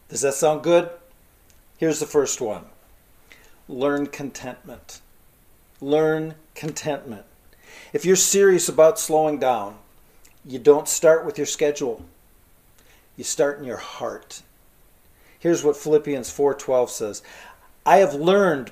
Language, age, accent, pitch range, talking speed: English, 40-59, American, 135-170 Hz, 120 wpm